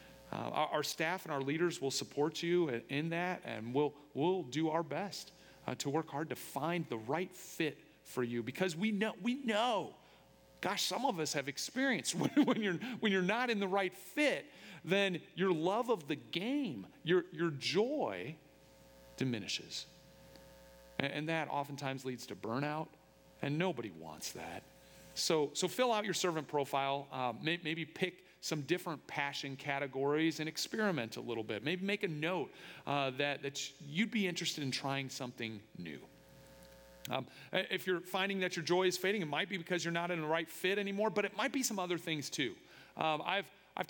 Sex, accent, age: male, American, 40-59